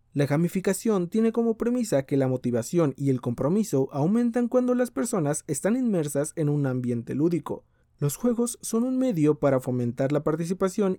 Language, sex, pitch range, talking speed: Spanish, male, 135-200 Hz, 165 wpm